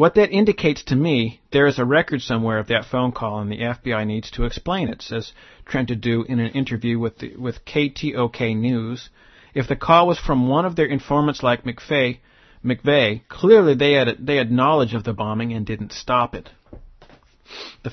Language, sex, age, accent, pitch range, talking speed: English, male, 50-69, American, 115-140 Hz, 200 wpm